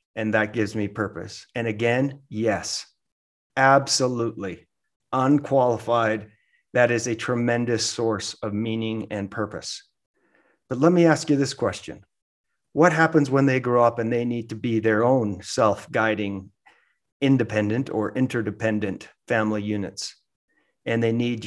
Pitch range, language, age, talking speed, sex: 110-130 Hz, English, 40-59, 135 wpm, male